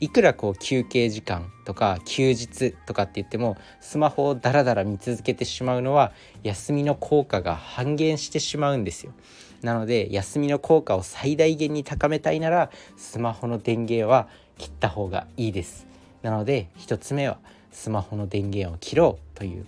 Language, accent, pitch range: Japanese, native, 100-145 Hz